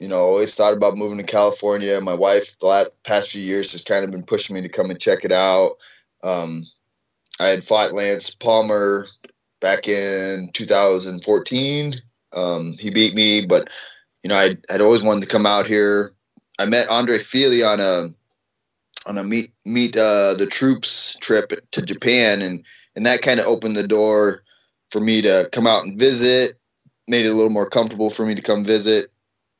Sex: male